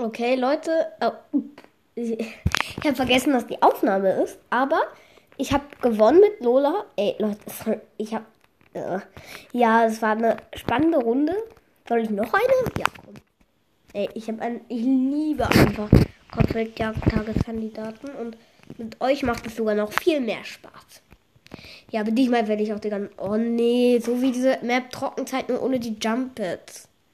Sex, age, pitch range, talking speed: female, 10-29, 210-260 Hz, 150 wpm